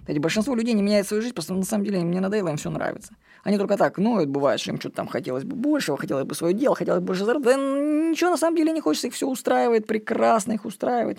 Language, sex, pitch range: Russian, female, 170-220 Hz